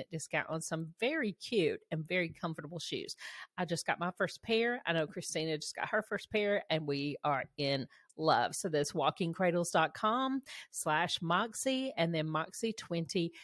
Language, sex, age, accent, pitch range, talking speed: English, female, 40-59, American, 170-225 Hz, 170 wpm